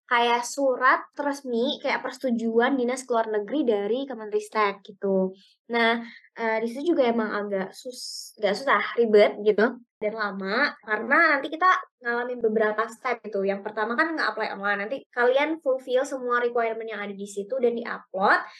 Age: 20-39